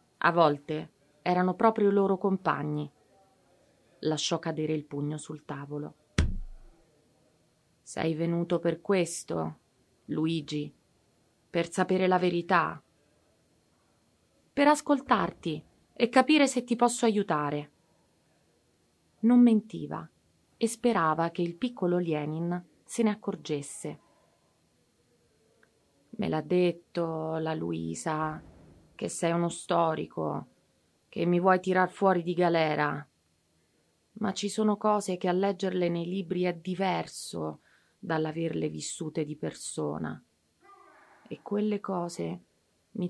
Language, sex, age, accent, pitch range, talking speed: Italian, female, 30-49, native, 155-200 Hz, 105 wpm